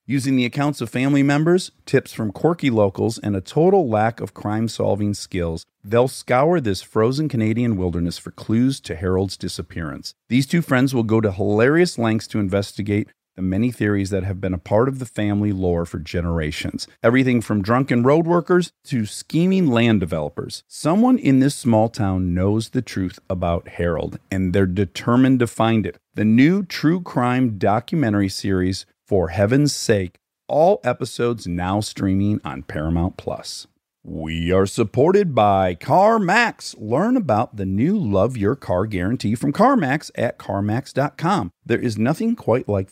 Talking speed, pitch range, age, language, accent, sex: 160 wpm, 95-135 Hz, 40-59, English, American, male